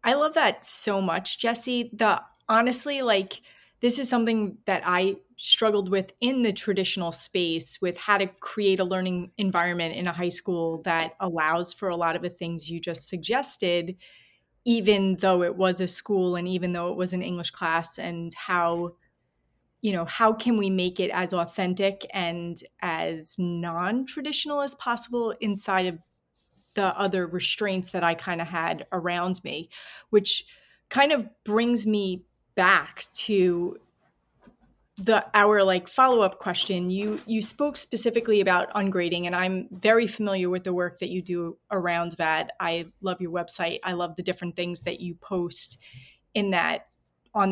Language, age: English, 30-49